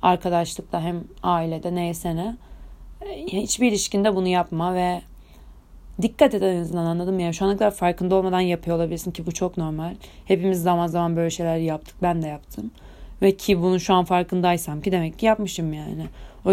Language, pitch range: Turkish, 165-190 Hz